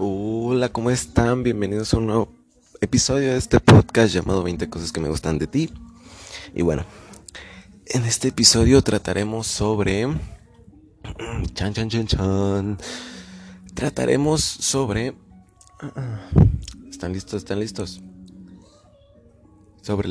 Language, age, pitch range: Spanish, 20-39, 90-115 Hz